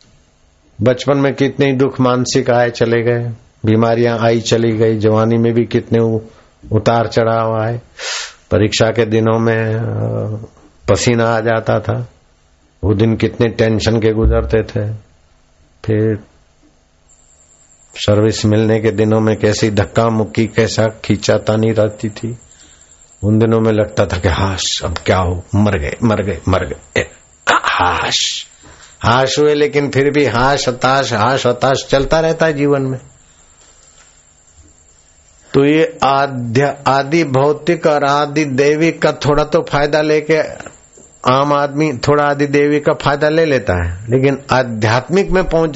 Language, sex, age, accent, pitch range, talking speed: Hindi, male, 50-69, native, 100-135 Hz, 140 wpm